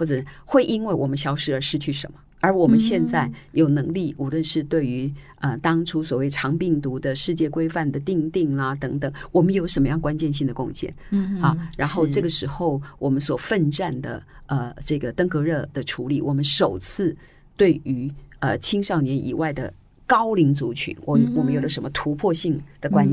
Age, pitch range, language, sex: 40-59, 140-175 Hz, Chinese, female